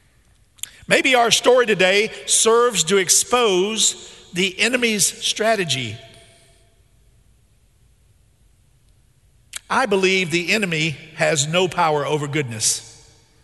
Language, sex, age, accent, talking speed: English, male, 50-69, American, 85 wpm